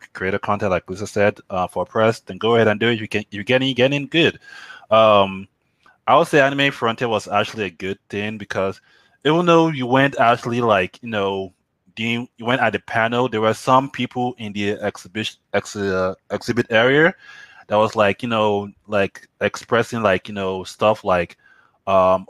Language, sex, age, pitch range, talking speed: English, male, 20-39, 95-115 Hz, 190 wpm